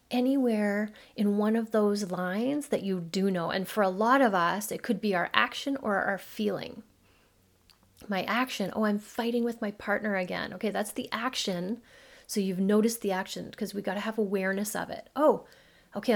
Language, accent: English, American